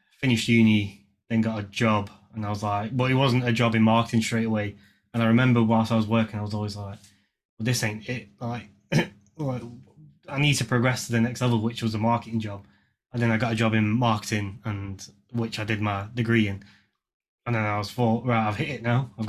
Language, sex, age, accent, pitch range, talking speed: English, male, 20-39, British, 105-120 Hz, 230 wpm